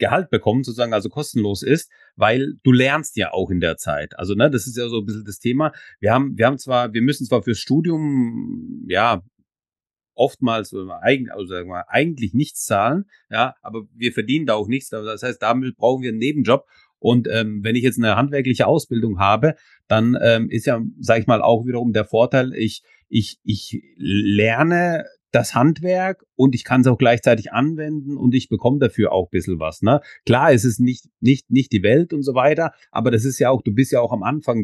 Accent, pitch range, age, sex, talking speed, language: German, 110-135 Hz, 30-49, male, 210 wpm, German